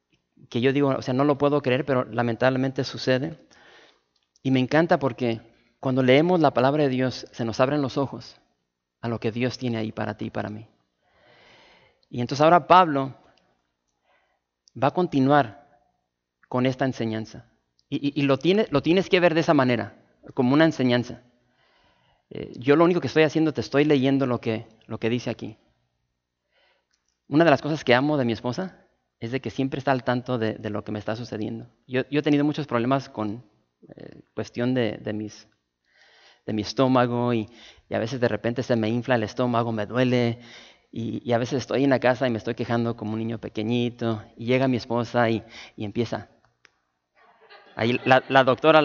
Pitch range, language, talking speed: 115-140 Hz, English, 195 wpm